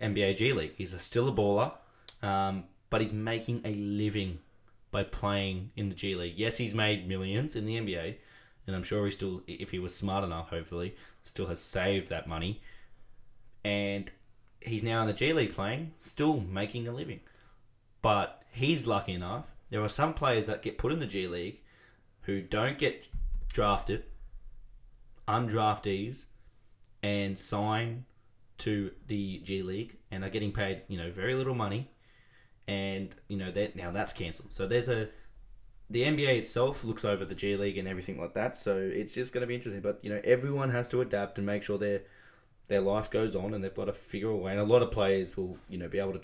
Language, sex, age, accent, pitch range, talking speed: English, male, 10-29, Australian, 100-120 Hz, 195 wpm